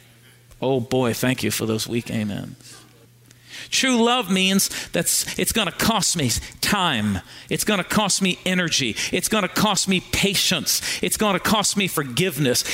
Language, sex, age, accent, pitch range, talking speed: English, male, 40-59, American, 140-190 Hz, 170 wpm